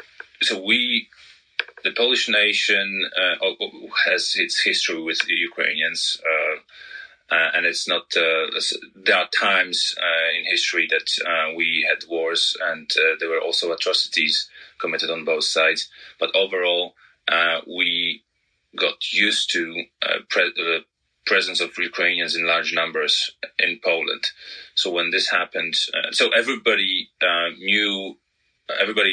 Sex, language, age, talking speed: male, English, 30-49, 135 wpm